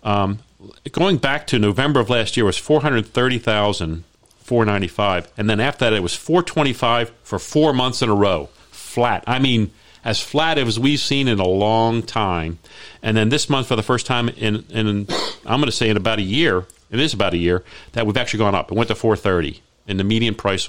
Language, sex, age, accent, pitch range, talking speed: English, male, 40-59, American, 95-120 Hz, 230 wpm